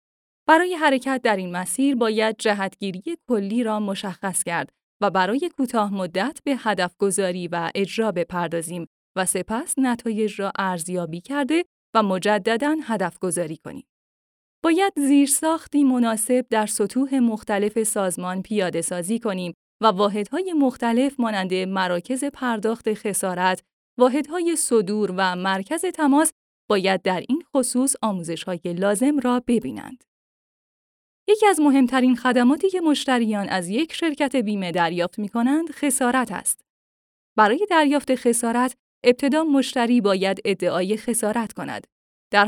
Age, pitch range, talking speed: 10-29, 190-260 Hz, 125 wpm